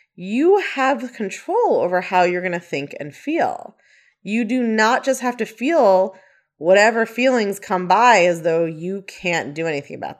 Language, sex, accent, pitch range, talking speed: English, female, American, 175-270 Hz, 170 wpm